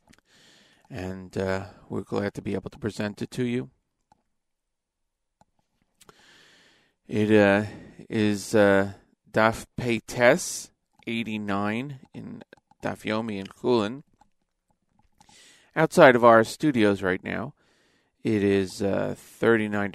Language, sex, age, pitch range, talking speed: English, male, 40-59, 100-125 Hz, 95 wpm